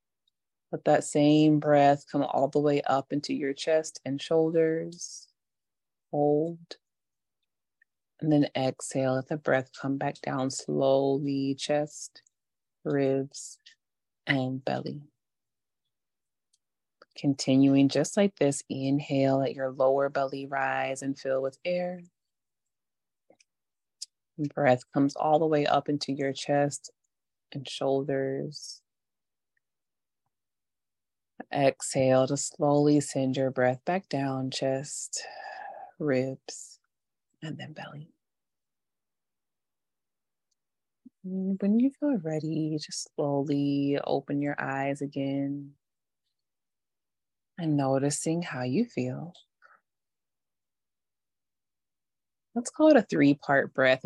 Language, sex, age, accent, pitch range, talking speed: English, female, 30-49, American, 135-160 Hz, 100 wpm